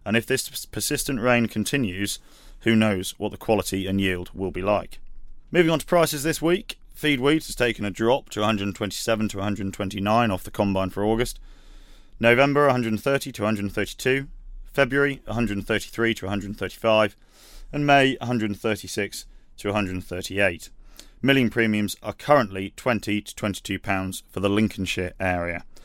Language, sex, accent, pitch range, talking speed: English, male, British, 100-130 Hz, 145 wpm